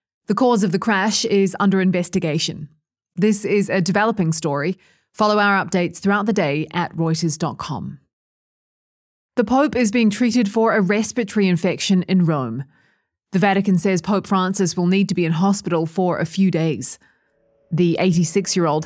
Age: 20-39